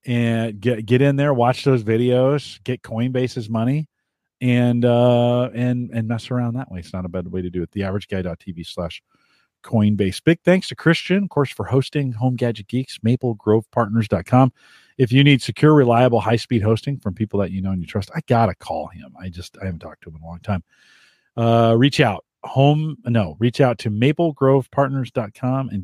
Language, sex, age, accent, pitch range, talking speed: English, male, 40-59, American, 105-140 Hz, 195 wpm